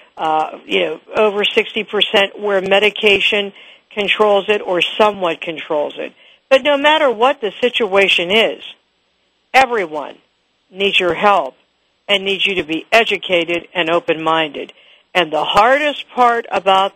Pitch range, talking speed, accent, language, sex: 180-220 Hz, 130 wpm, American, English, female